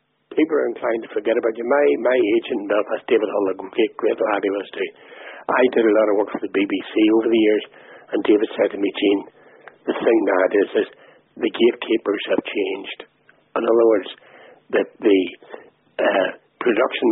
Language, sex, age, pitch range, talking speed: English, male, 60-79, 340-450 Hz, 190 wpm